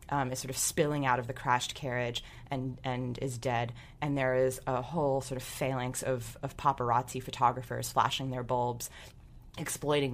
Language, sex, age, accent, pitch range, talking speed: English, female, 20-39, American, 125-140 Hz, 180 wpm